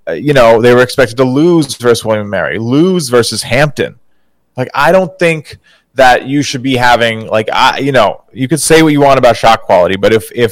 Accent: American